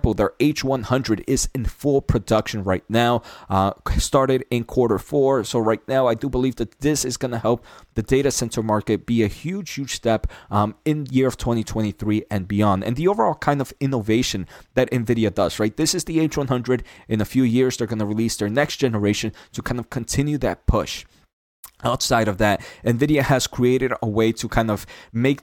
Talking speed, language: 200 wpm, English